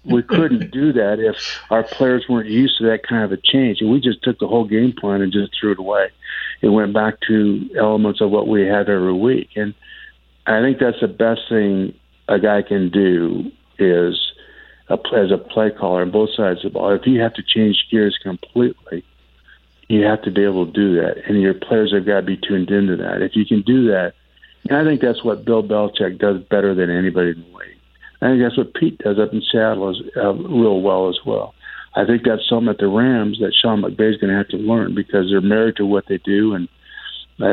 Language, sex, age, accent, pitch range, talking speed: English, male, 50-69, American, 100-115 Hz, 235 wpm